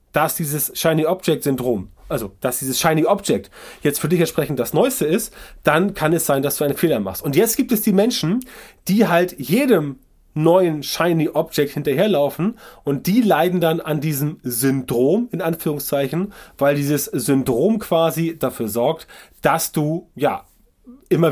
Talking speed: 150 wpm